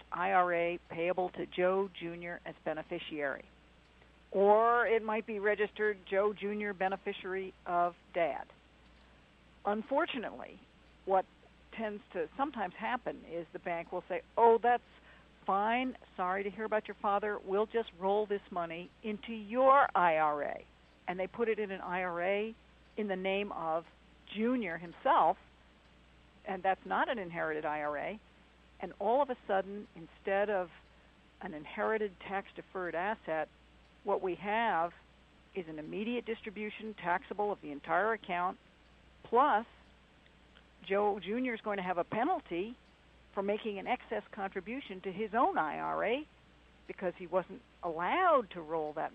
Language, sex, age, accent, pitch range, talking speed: English, female, 60-79, American, 170-215 Hz, 135 wpm